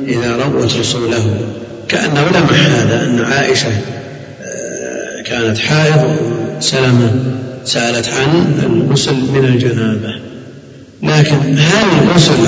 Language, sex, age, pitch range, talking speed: Arabic, male, 50-69, 125-150 Hz, 90 wpm